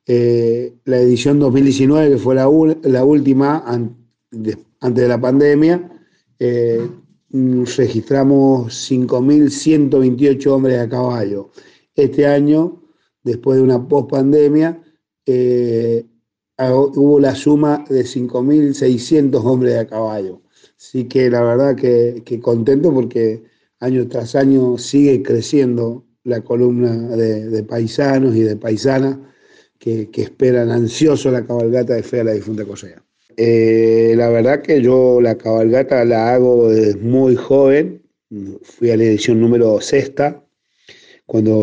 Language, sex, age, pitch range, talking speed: Spanish, male, 50-69, 110-135 Hz, 130 wpm